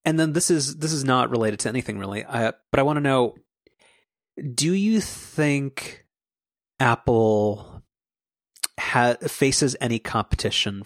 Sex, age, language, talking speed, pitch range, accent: male, 30-49, English, 140 wpm, 105-130 Hz, American